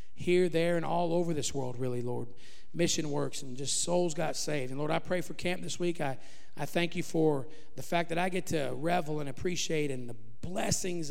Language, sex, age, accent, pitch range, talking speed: English, male, 40-59, American, 150-185 Hz, 220 wpm